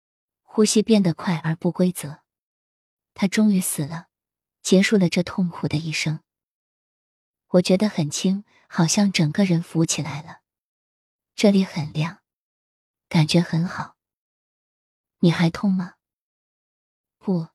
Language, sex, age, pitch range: Chinese, female, 20-39, 160-195 Hz